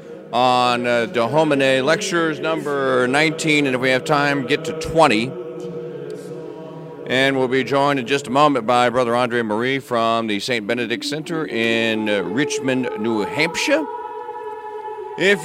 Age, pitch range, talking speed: 40-59, 115-170 Hz, 145 wpm